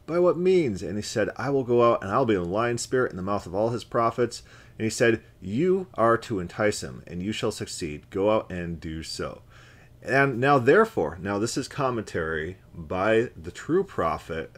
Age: 30-49